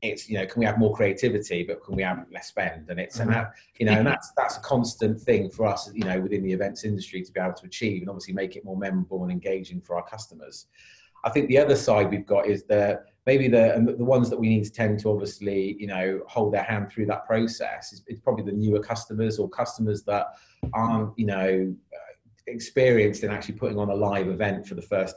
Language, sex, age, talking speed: English, male, 30-49, 245 wpm